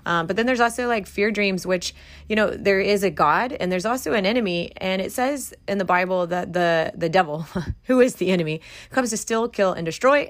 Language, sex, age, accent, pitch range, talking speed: English, female, 30-49, American, 160-200 Hz, 235 wpm